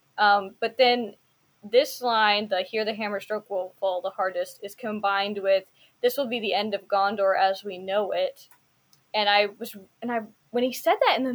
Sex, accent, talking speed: female, American, 205 wpm